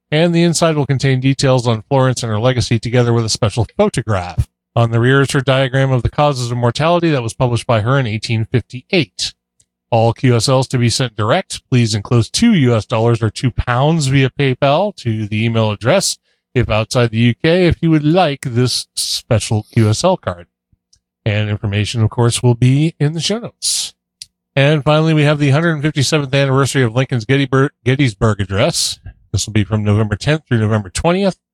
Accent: American